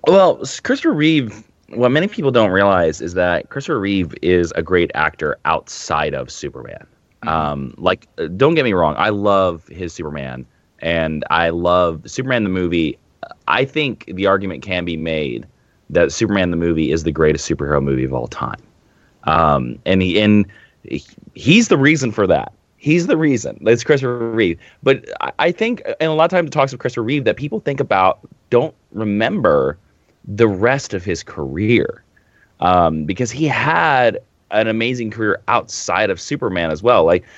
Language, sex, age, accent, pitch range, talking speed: English, male, 30-49, American, 90-145 Hz, 175 wpm